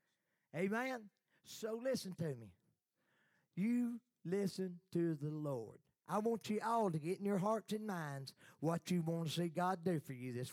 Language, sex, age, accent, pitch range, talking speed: English, male, 40-59, American, 170-240 Hz, 175 wpm